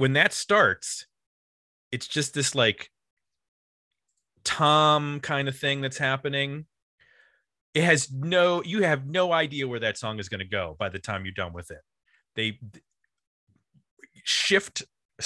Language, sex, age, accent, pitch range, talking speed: English, male, 30-49, American, 105-145 Hz, 145 wpm